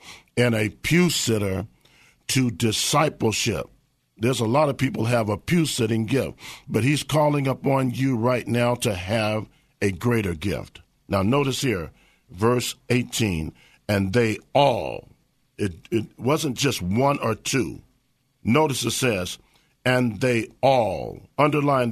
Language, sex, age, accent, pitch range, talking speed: English, male, 50-69, American, 105-135 Hz, 130 wpm